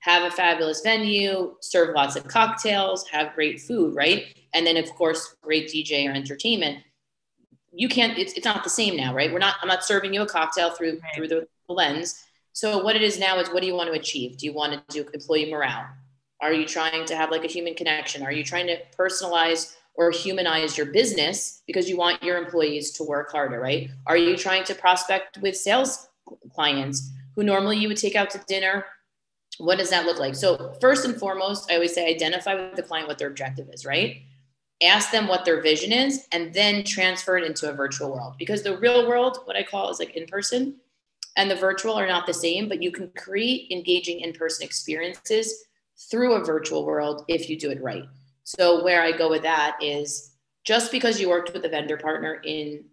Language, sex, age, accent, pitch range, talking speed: English, female, 30-49, American, 155-195 Hz, 210 wpm